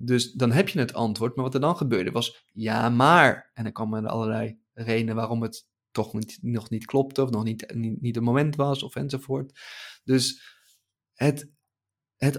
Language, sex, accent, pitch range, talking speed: Dutch, male, Dutch, 115-135 Hz, 195 wpm